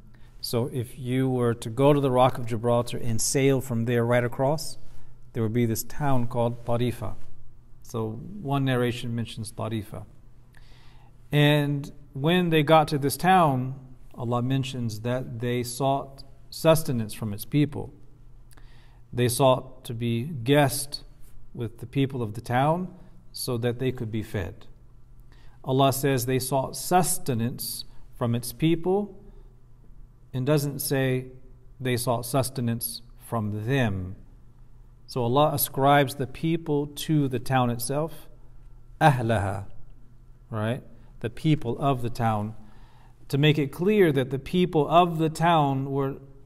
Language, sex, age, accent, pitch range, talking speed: English, male, 40-59, American, 120-140 Hz, 135 wpm